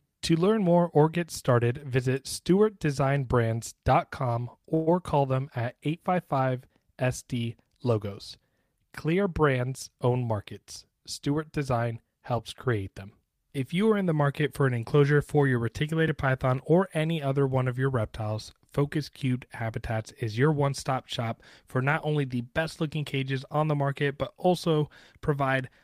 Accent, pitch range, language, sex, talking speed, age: American, 120-145 Hz, English, male, 140 wpm, 30-49